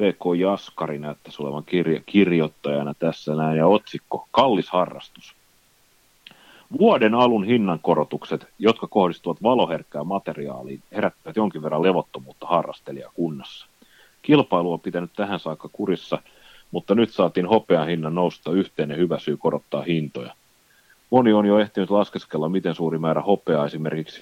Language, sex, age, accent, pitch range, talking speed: Finnish, male, 30-49, native, 75-95 Hz, 130 wpm